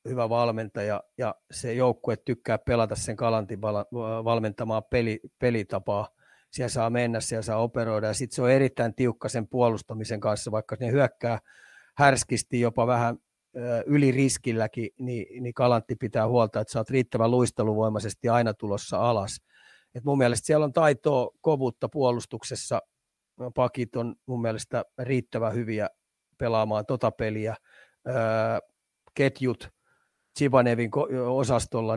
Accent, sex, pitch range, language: native, male, 110-125 Hz, Finnish